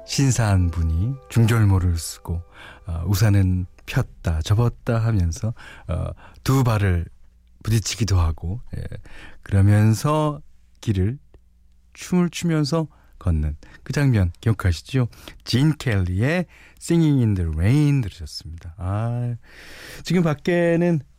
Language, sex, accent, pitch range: Korean, male, native, 90-140 Hz